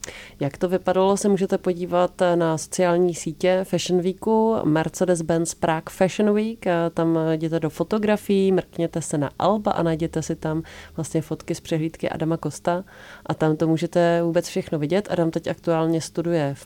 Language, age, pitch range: Czech, 30-49, 160-180 Hz